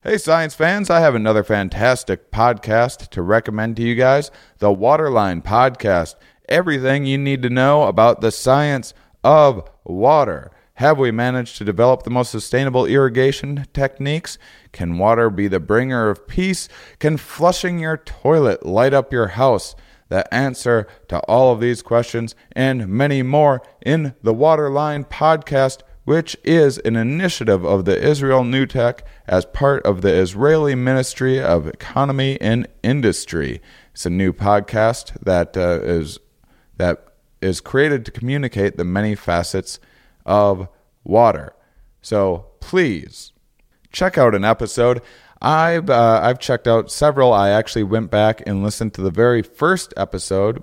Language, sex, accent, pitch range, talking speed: English, male, American, 105-140 Hz, 145 wpm